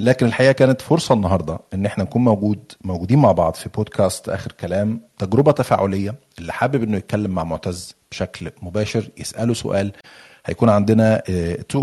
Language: Arabic